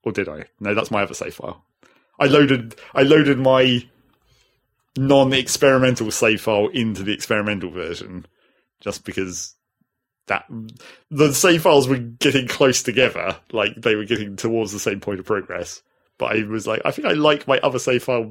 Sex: male